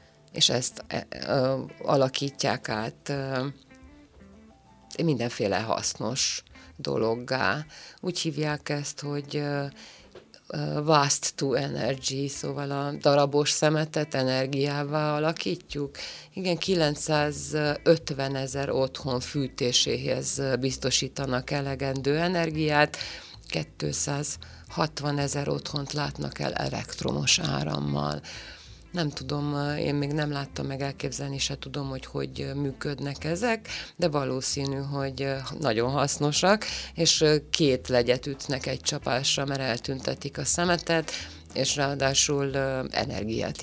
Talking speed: 90 wpm